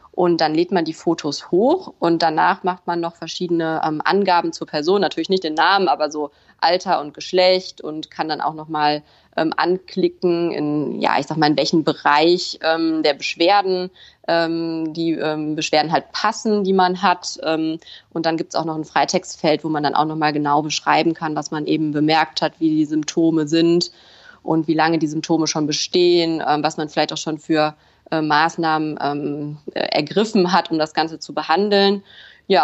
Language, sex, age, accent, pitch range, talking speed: German, female, 20-39, German, 150-175 Hz, 195 wpm